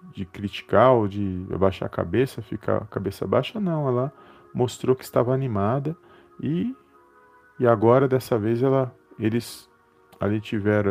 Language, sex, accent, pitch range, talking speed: Portuguese, male, Brazilian, 100-130 Hz, 145 wpm